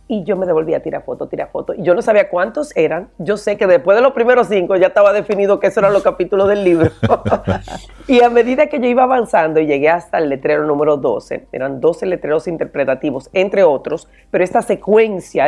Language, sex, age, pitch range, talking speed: Spanish, female, 40-59, 165-240 Hz, 215 wpm